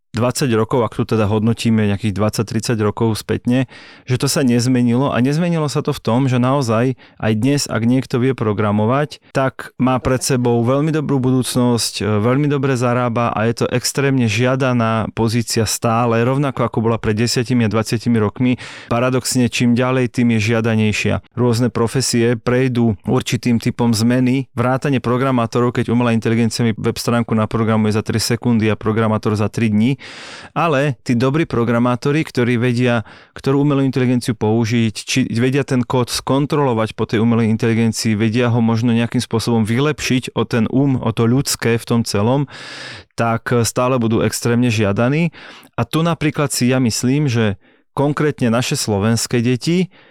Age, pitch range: 30-49, 115-130 Hz